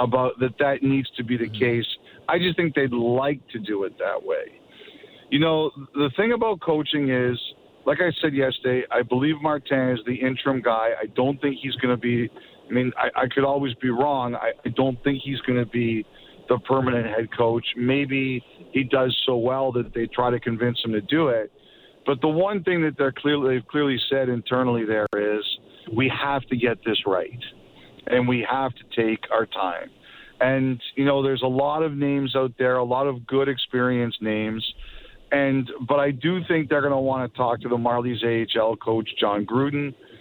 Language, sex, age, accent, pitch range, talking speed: English, male, 50-69, American, 120-140 Hz, 200 wpm